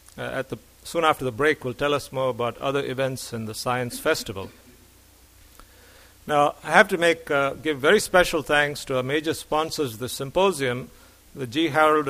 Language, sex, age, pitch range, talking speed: English, male, 50-69, 125-155 Hz, 190 wpm